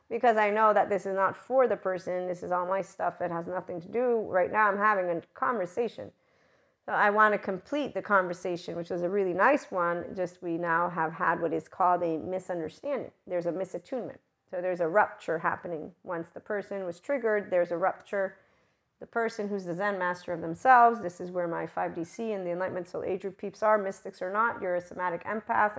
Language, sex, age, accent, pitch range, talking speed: English, female, 40-59, American, 180-210 Hz, 215 wpm